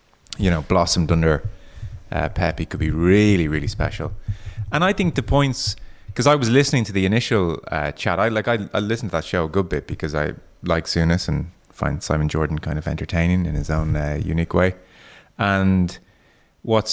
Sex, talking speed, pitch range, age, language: male, 195 wpm, 85-100 Hz, 30-49, English